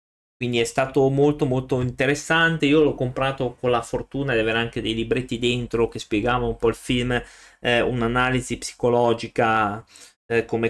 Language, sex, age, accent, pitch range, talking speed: Italian, male, 20-39, native, 115-140 Hz, 165 wpm